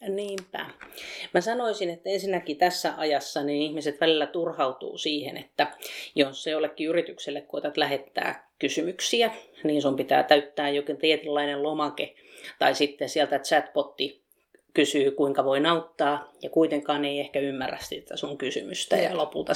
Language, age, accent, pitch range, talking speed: Finnish, 30-49, native, 145-165 Hz, 140 wpm